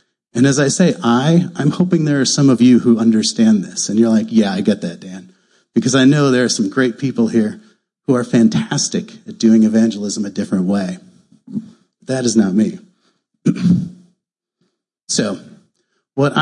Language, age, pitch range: English, 30-49, 115-185 Hz